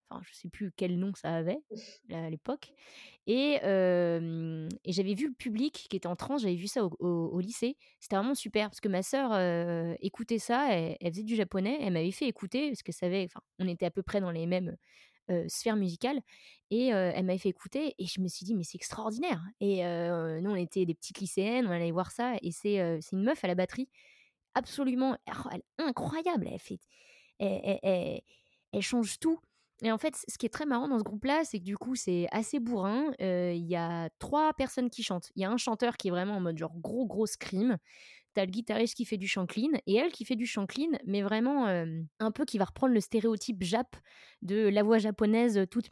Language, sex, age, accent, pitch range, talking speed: French, female, 20-39, French, 185-245 Hz, 240 wpm